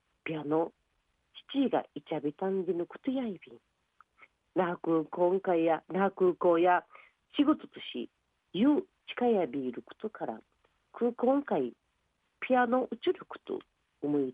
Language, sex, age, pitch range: Japanese, female, 40-59, 155-245 Hz